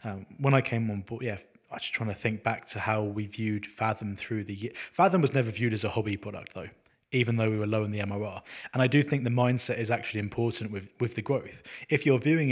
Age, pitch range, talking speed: 20-39, 110-130 Hz, 260 wpm